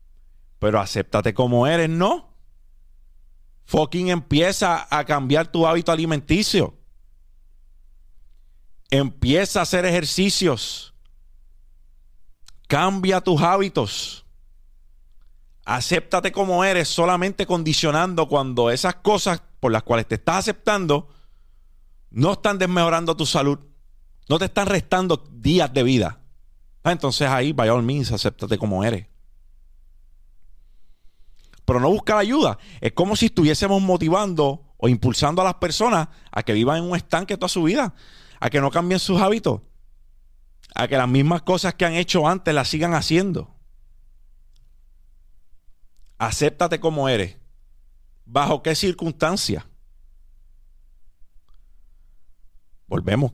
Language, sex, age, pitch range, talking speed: Spanish, male, 30-49, 115-180 Hz, 115 wpm